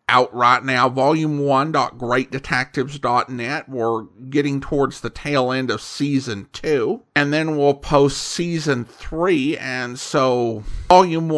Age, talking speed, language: 50-69, 115 wpm, English